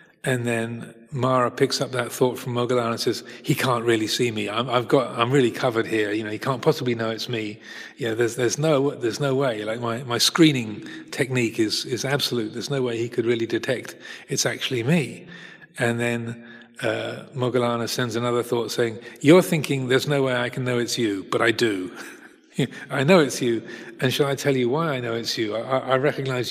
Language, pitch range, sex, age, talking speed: English, 115-135 Hz, male, 40-59, 215 wpm